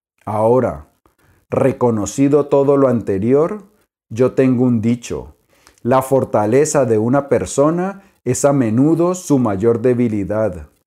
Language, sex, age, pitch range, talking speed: Spanish, male, 40-59, 115-150 Hz, 110 wpm